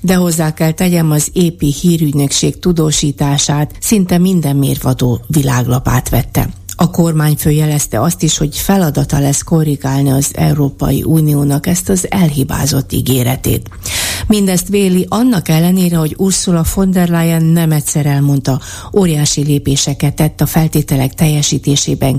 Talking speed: 130 wpm